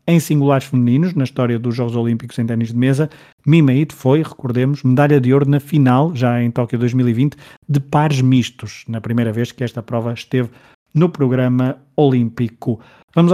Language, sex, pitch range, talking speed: Portuguese, male, 120-145 Hz, 170 wpm